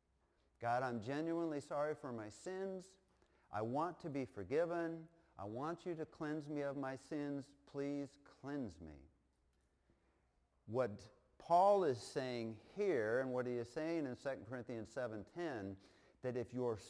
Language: English